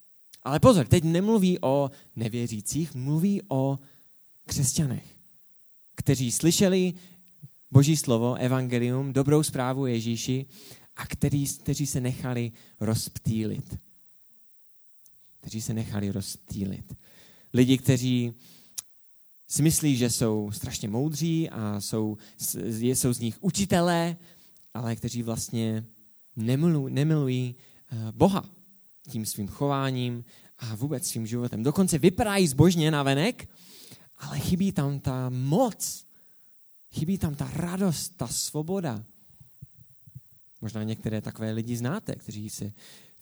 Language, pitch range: English, 115-150 Hz